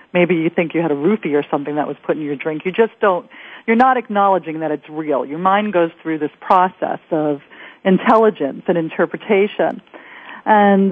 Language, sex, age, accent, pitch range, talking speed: English, female, 40-59, American, 175-230 Hz, 190 wpm